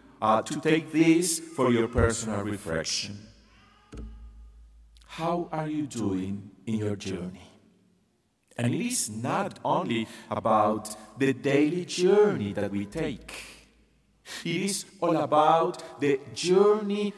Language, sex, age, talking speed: English, male, 50-69, 115 wpm